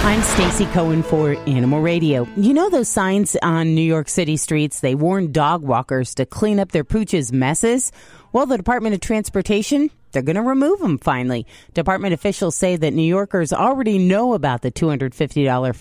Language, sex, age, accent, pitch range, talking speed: English, female, 30-49, American, 140-205 Hz, 180 wpm